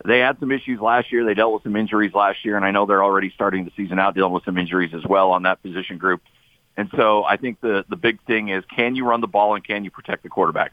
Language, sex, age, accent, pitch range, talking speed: English, male, 50-69, American, 95-115 Hz, 290 wpm